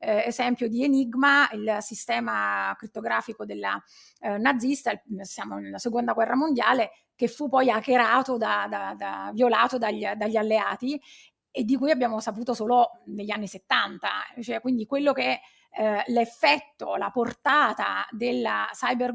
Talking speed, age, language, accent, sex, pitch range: 145 wpm, 30-49, Italian, native, female, 220-255 Hz